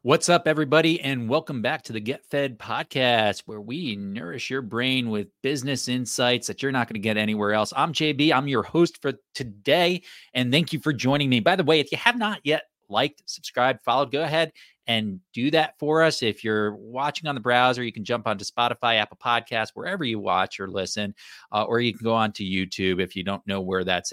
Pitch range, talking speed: 105-140 Hz, 220 wpm